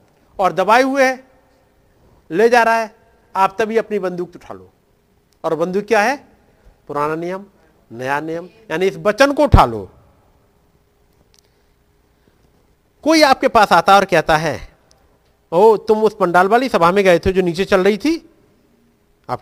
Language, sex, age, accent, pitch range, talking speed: Hindi, male, 50-69, native, 160-225 Hz, 160 wpm